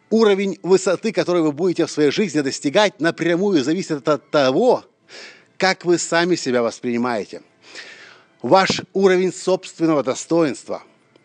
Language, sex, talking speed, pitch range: Russian, male, 115 wpm, 145-185 Hz